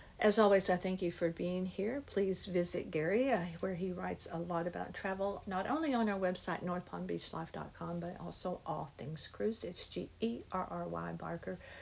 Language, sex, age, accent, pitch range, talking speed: English, female, 60-79, American, 170-200 Hz, 170 wpm